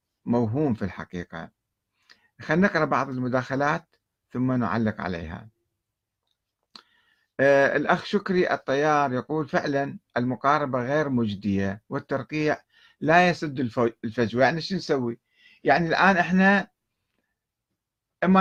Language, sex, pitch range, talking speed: Arabic, male, 115-175 Hz, 100 wpm